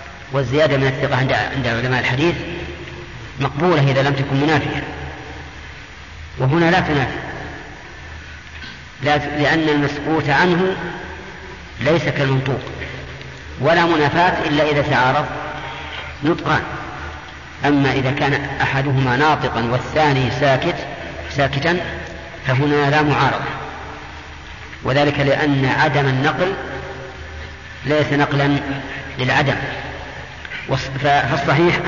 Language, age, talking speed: Arabic, 40-59, 85 wpm